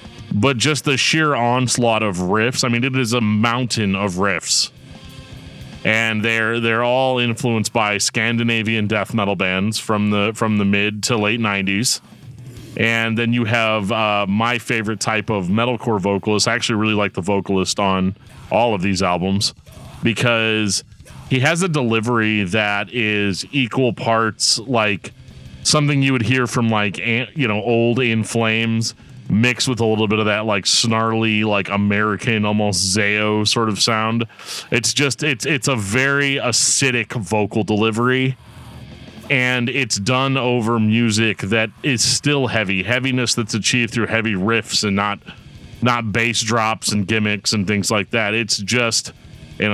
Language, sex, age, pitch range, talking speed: English, male, 30-49, 105-125 Hz, 155 wpm